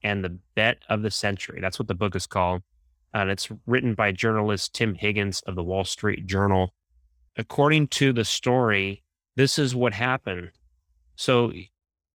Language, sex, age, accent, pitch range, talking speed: English, male, 30-49, American, 90-115 Hz, 165 wpm